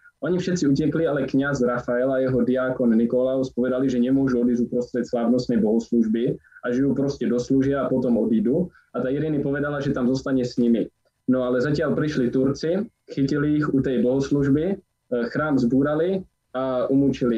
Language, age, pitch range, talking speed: Slovak, 20-39, 120-140 Hz, 165 wpm